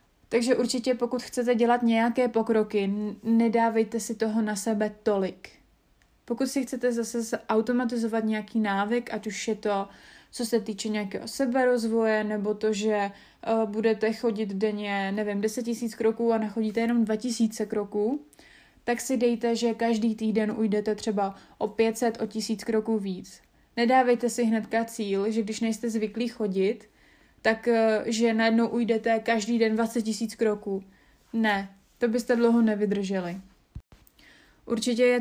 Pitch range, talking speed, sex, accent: 215-235 Hz, 140 wpm, female, native